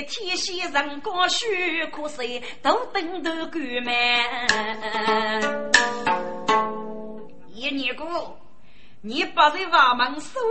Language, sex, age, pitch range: Chinese, female, 30-49, 230-355 Hz